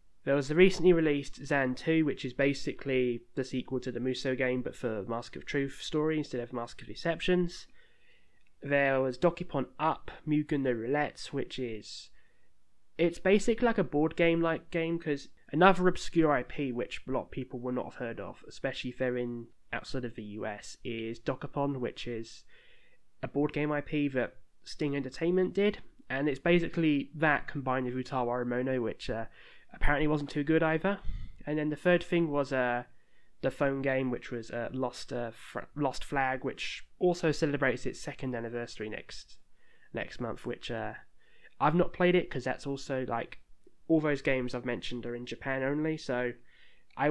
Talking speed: 180 wpm